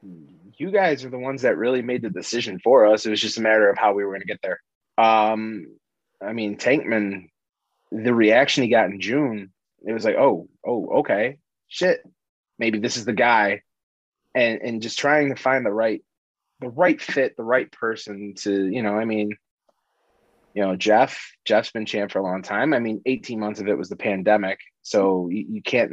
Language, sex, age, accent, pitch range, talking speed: English, male, 20-39, American, 95-115 Hz, 205 wpm